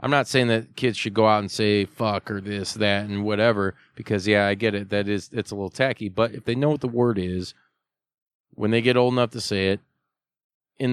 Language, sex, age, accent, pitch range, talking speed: English, male, 20-39, American, 115-150 Hz, 240 wpm